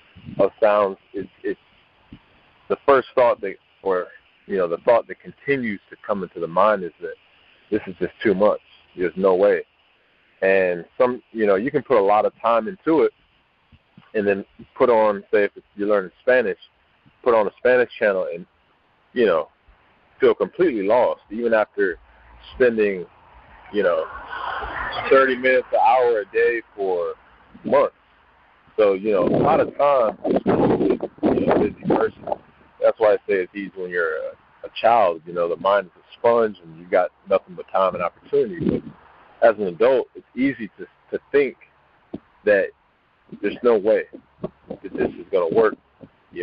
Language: English